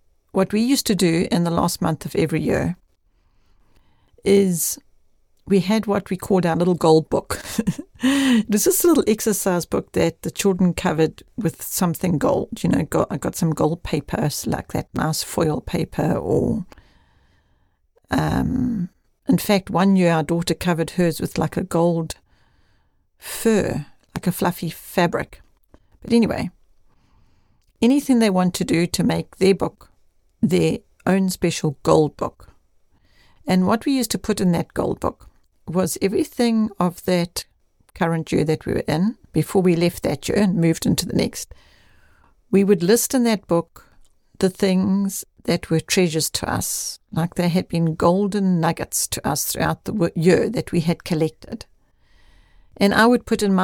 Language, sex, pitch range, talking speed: English, female, 155-200 Hz, 165 wpm